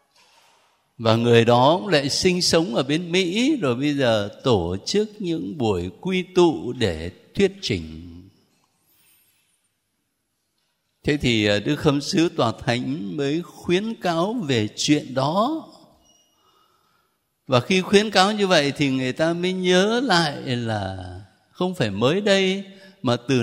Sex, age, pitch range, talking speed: male, 60-79, 110-180 Hz, 135 wpm